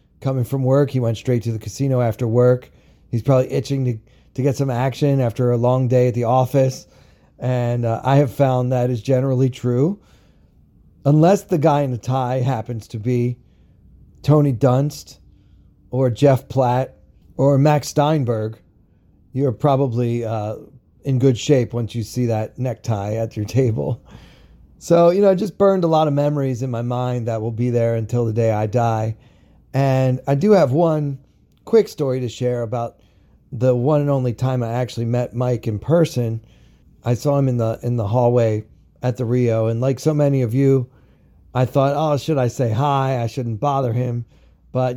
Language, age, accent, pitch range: English, 30-49, American, 110-135 Hz